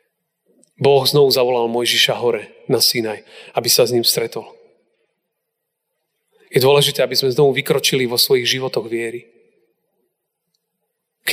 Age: 40-59